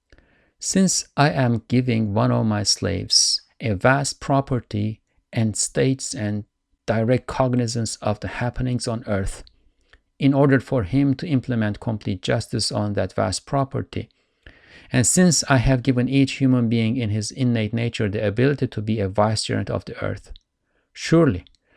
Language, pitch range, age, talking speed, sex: English, 105-135 Hz, 50-69, 150 wpm, male